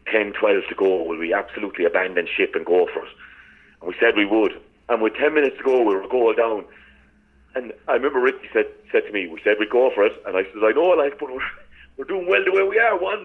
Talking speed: 265 wpm